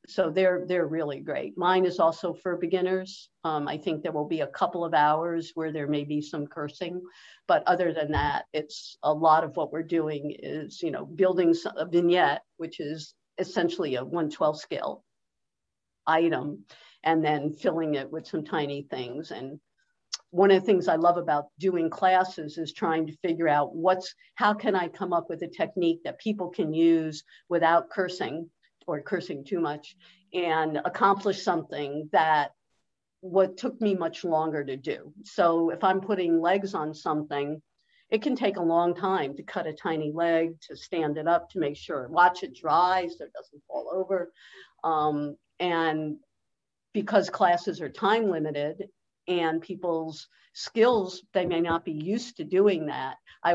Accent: American